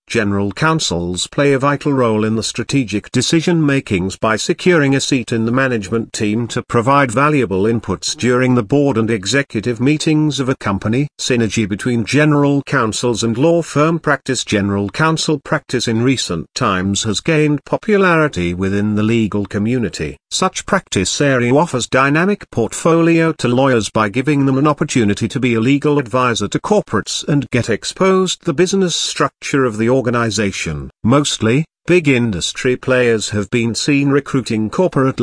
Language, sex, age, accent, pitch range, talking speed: English, male, 50-69, British, 110-145 Hz, 155 wpm